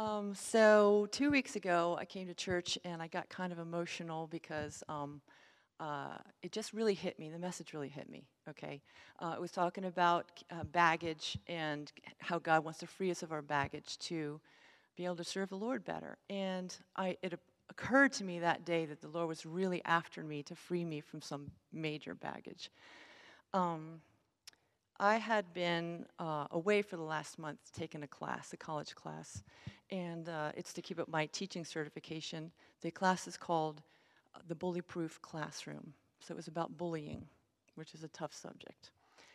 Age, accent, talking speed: 40-59, American, 180 wpm